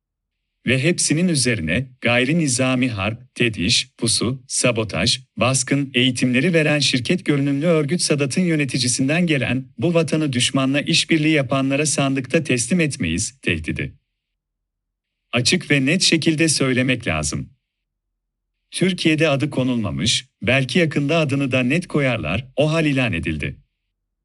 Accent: native